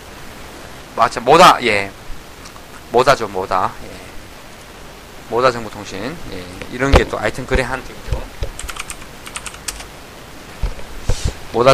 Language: Korean